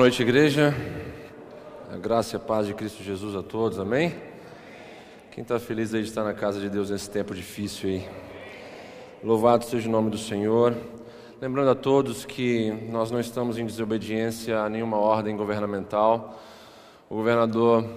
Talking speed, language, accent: 160 wpm, Portuguese, Brazilian